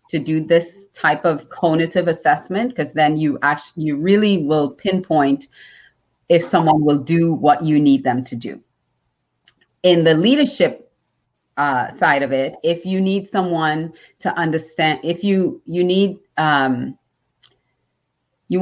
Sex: female